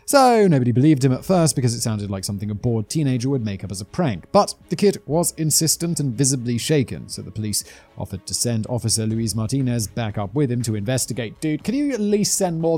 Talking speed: 235 wpm